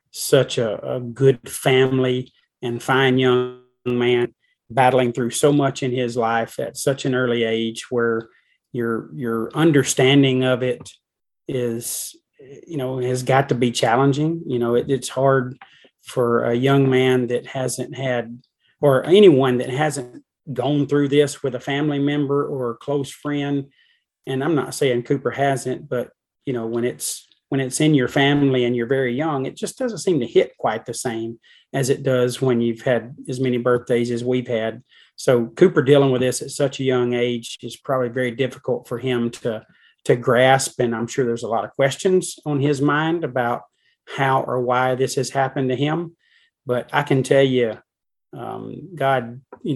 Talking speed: 180 wpm